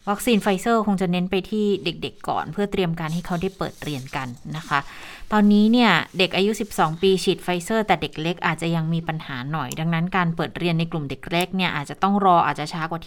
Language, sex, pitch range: Thai, female, 170-205 Hz